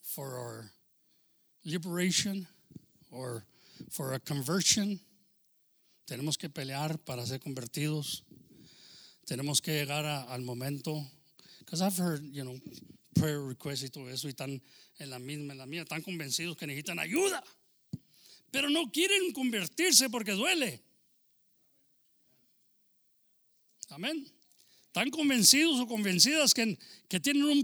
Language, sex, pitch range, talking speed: English, male, 150-225 Hz, 125 wpm